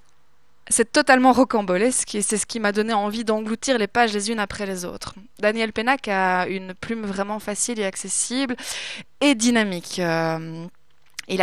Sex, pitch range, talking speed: female, 185-230 Hz, 150 wpm